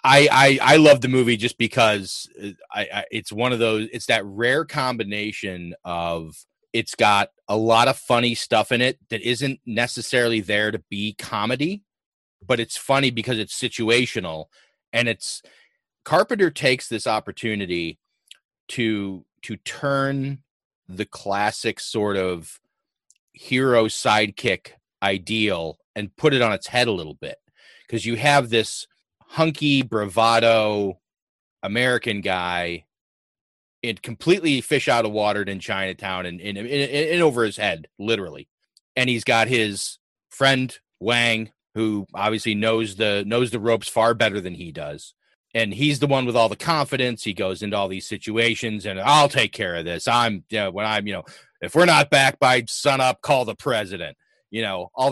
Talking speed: 160 wpm